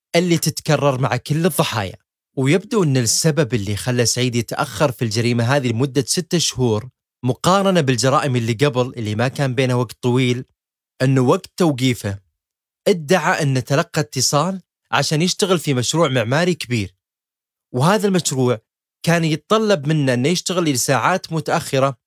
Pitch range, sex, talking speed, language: 125-170 Hz, male, 135 wpm, Arabic